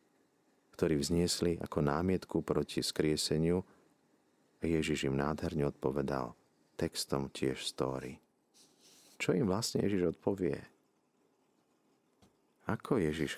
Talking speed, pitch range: 95 wpm, 70-95 Hz